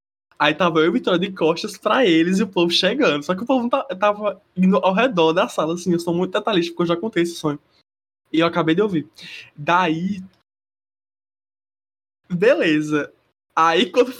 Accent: Brazilian